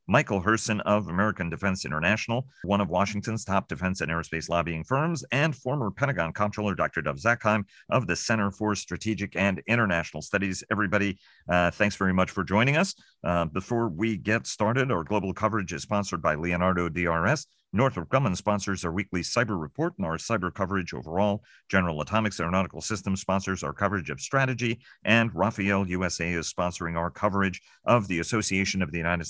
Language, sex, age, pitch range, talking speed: English, male, 50-69, 90-110 Hz, 175 wpm